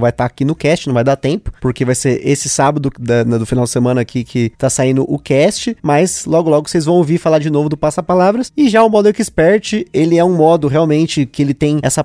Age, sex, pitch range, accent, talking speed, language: 20-39, male, 145-190 Hz, Brazilian, 260 wpm, Portuguese